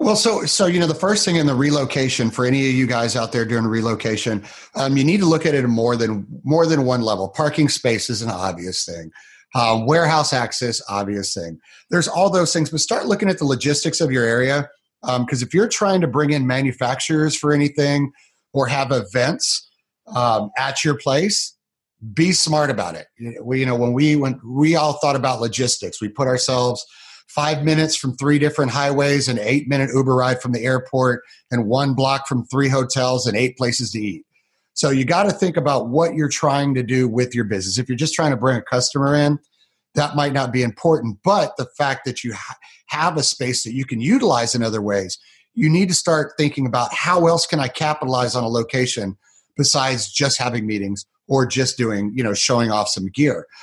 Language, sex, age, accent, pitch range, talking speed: English, male, 30-49, American, 120-150 Hz, 215 wpm